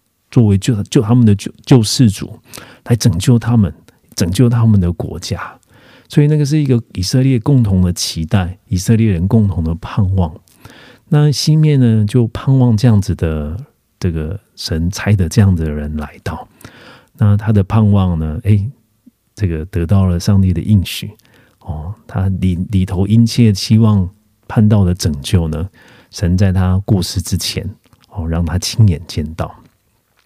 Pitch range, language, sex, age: 90-115 Hz, Korean, male, 40-59